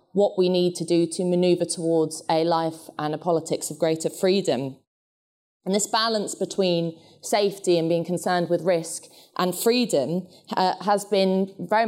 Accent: British